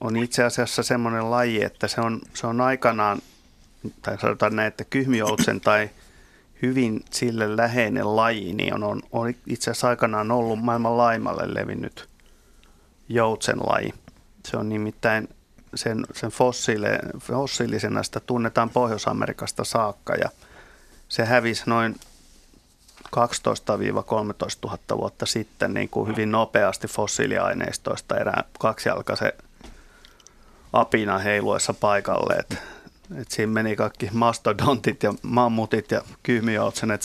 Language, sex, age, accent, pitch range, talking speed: Finnish, male, 30-49, native, 110-120 Hz, 110 wpm